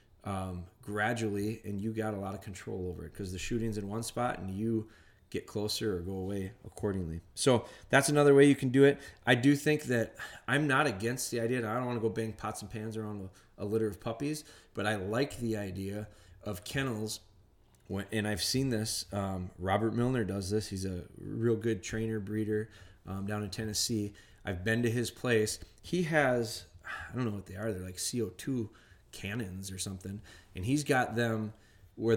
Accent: American